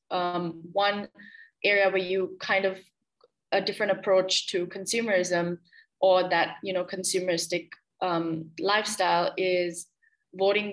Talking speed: 115 wpm